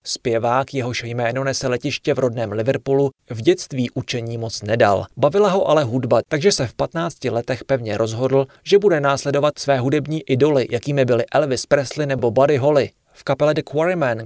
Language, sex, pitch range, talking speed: Czech, male, 120-145 Hz, 175 wpm